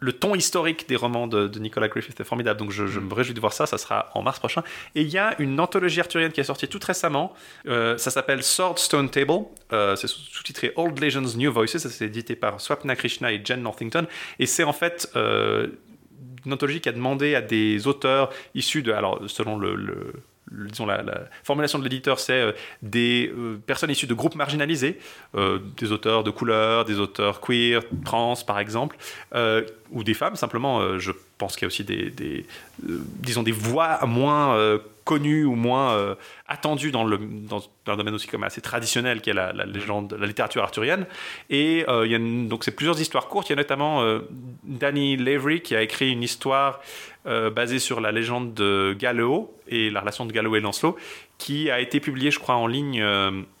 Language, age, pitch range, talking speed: French, 30-49, 110-145 Hz, 210 wpm